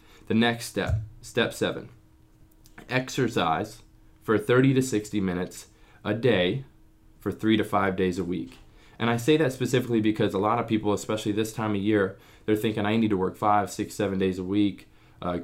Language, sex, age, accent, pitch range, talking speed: English, male, 20-39, American, 95-110 Hz, 185 wpm